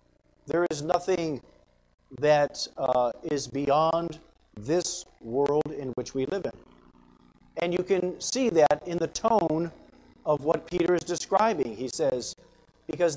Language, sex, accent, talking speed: English, male, American, 135 wpm